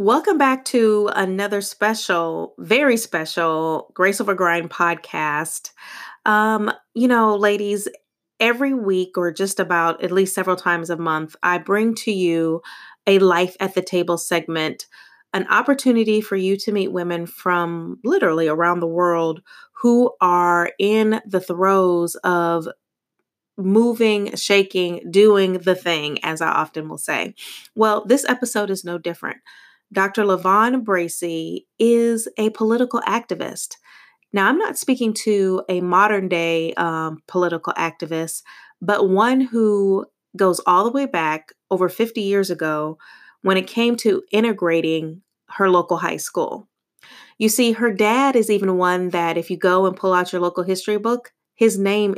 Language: English